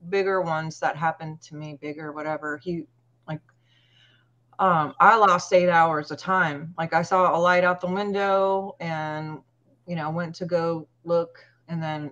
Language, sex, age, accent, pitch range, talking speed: English, female, 30-49, American, 155-190 Hz, 170 wpm